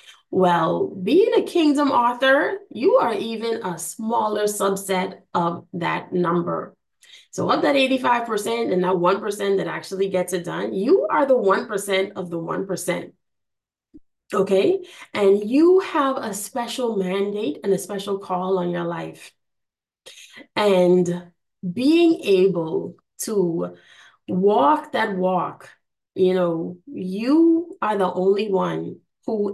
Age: 20-39